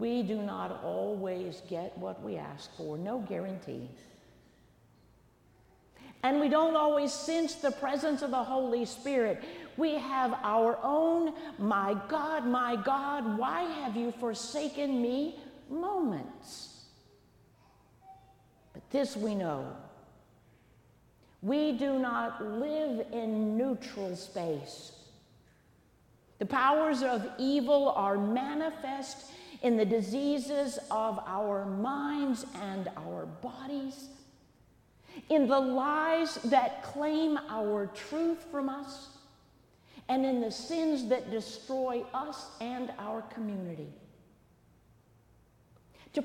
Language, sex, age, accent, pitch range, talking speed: English, female, 50-69, American, 220-290 Hz, 105 wpm